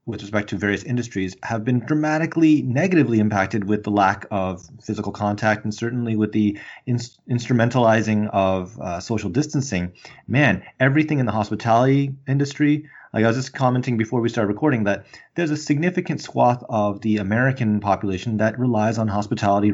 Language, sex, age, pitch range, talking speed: English, male, 30-49, 105-125 Hz, 160 wpm